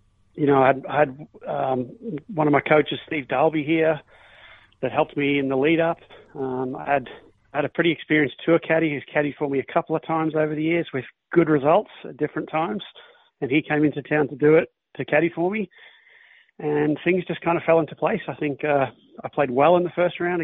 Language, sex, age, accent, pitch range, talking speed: English, male, 40-59, Australian, 140-160 Hz, 220 wpm